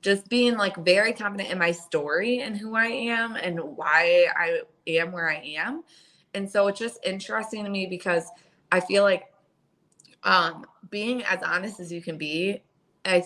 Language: English